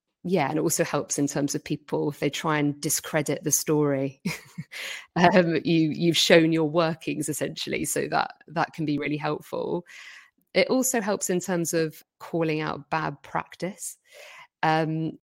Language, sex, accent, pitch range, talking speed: English, female, British, 150-175 Hz, 160 wpm